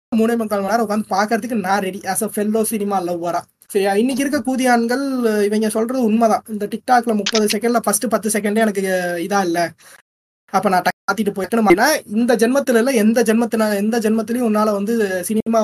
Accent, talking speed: native, 60 wpm